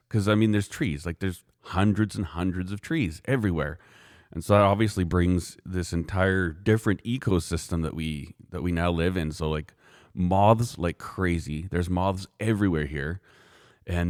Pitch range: 85-105 Hz